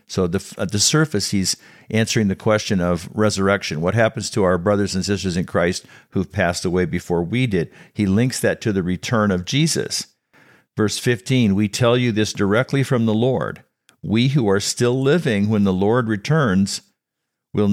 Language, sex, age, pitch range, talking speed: English, male, 50-69, 95-125 Hz, 180 wpm